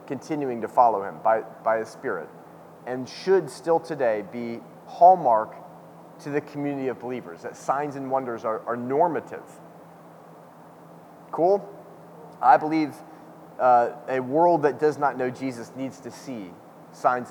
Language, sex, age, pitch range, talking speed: English, male, 30-49, 130-165 Hz, 140 wpm